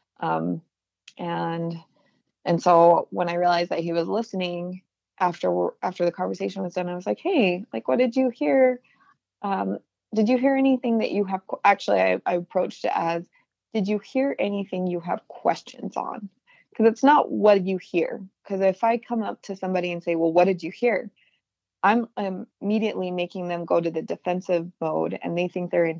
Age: 20-39